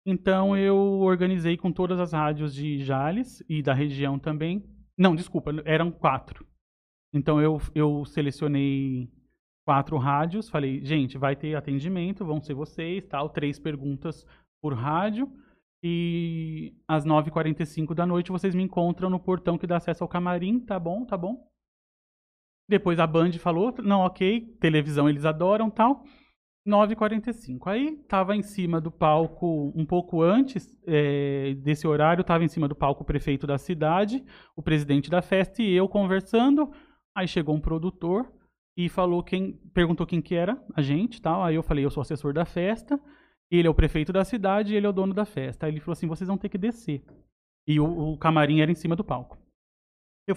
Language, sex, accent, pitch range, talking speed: Portuguese, male, Brazilian, 150-195 Hz, 175 wpm